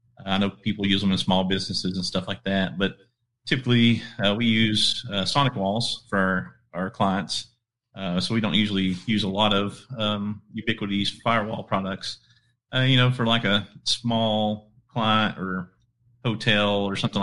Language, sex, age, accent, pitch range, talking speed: English, male, 30-49, American, 95-115 Hz, 170 wpm